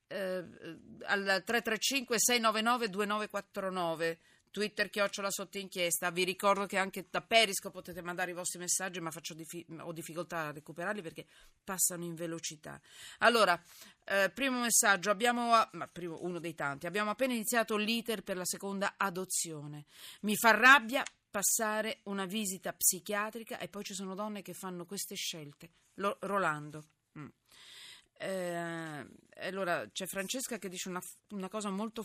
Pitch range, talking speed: 165-215 Hz, 145 wpm